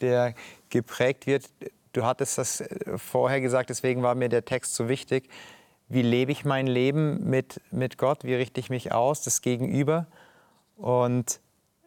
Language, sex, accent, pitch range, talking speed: German, male, German, 125-145 Hz, 155 wpm